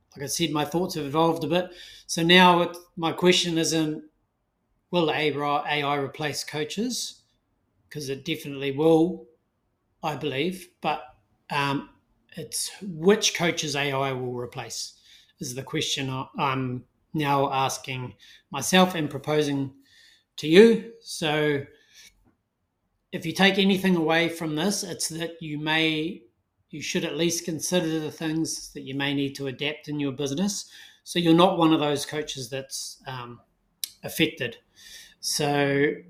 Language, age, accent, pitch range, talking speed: English, 30-49, Australian, 130-170 Hz, 135 wpm